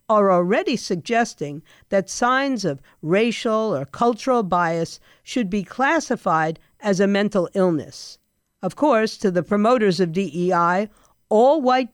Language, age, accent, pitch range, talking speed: English, 50-69, American, 170-235 Hz, 130 wpm